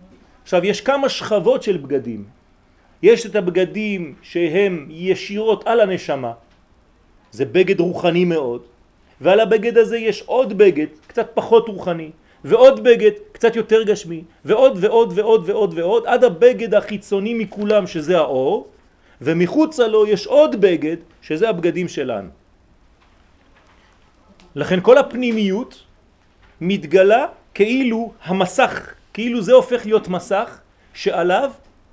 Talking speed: 110 wpm